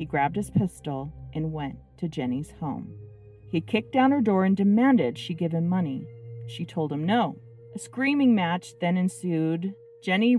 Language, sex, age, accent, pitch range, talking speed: English, female, 40-59, American, 155-220 Hz, 175 wpm